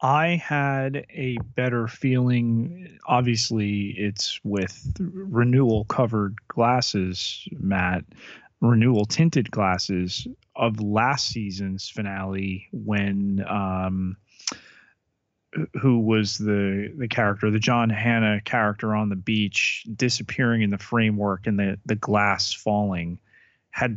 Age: 30-49